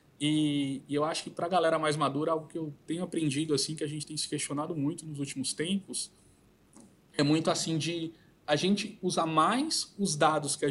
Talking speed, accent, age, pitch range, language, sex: 215 wpm, Brazilian, 20-39, 145-195 Hz, Portuguese, male